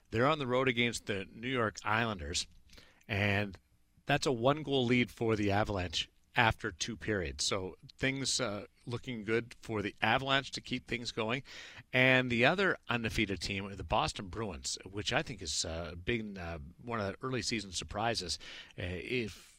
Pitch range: 95-120 Hz